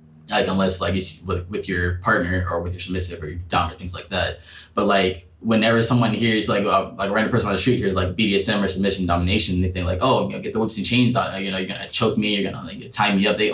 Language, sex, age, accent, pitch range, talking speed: English, male, 10-29, American, 90-100 Hz, 280 wpm